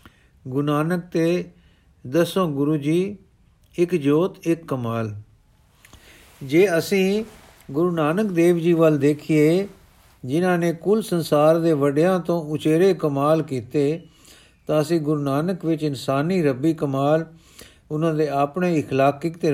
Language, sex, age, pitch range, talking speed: Punjabi, male, 50-69, 145-175 Hz, 125 wpm